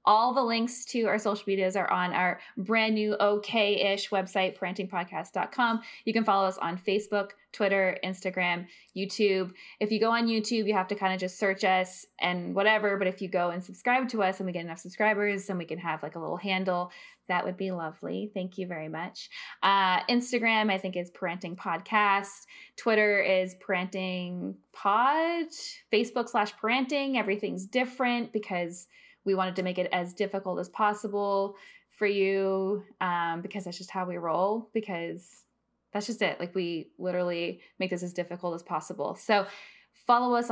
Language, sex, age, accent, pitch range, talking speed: English, female, 20-39, American, 180-215 Hz, 175 wpm